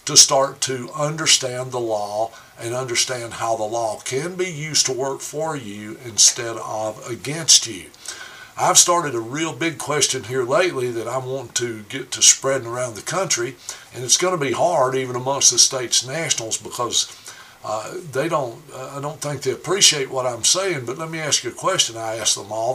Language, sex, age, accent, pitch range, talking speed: English, male, 60-79, American, 125-160 Hz, 200 wpm